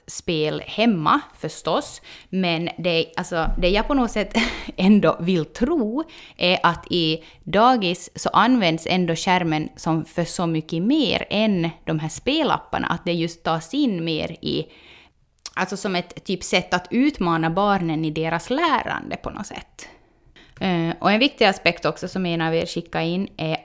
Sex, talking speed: female, 160 wpm